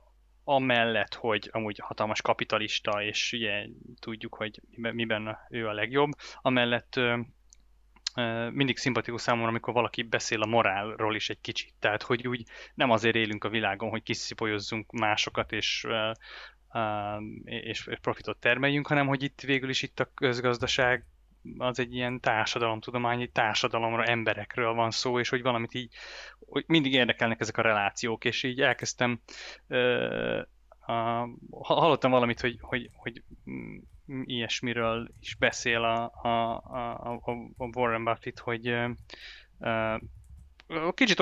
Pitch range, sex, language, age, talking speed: 110-125 Hz, male, Hungarian, 20-39, 130 wpm